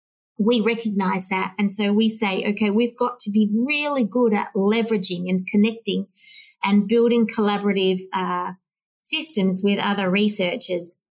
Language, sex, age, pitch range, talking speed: English, female, 30-49, 190-225 Hz, 140 wpm